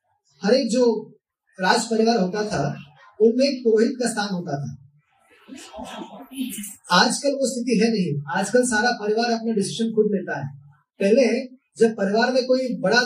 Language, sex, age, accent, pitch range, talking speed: Hindi, male, 20-39, native, 185-245 Hz, 150 wpm